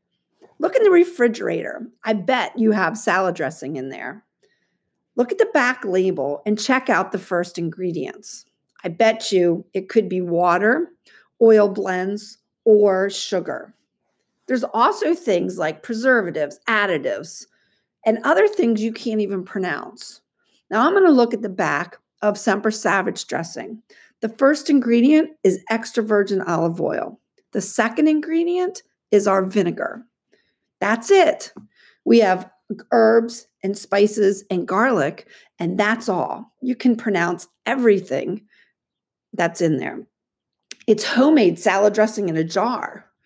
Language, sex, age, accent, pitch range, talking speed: English, female, 50-69, American, 190-250 Hz, 135 wpm